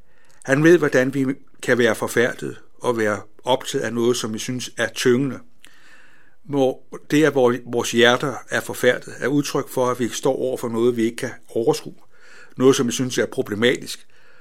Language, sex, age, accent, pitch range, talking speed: Danish, male, 60-79, native, 120-140 Hz, 175 wpm